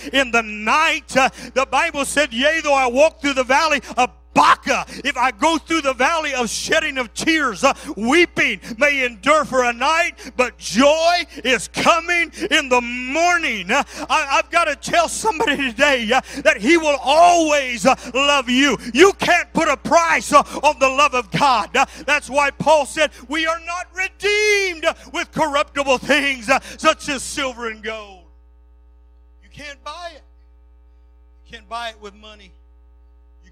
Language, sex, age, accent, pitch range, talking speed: English, male, 50-69, American, 225-295 Hz, 170 wpm